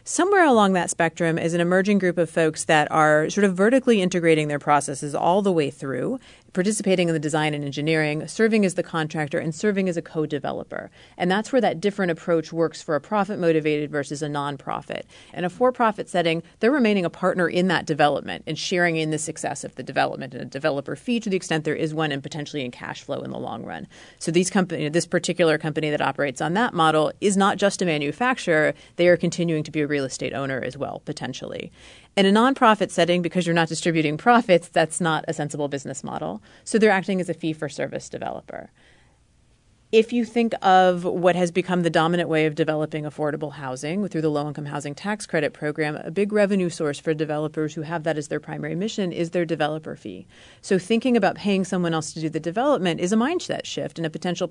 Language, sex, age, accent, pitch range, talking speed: English, female, 30-49, American, 155-190 Hz, 210 wpm